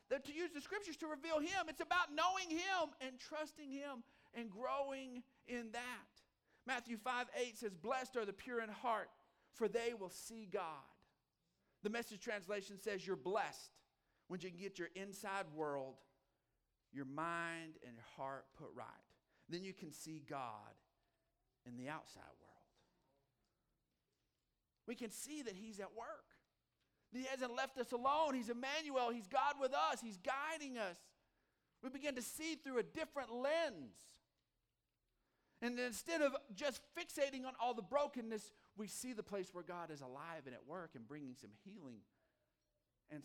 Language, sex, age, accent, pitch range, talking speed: English, male, 50-69, American, 175-265 Hz, 160 wpm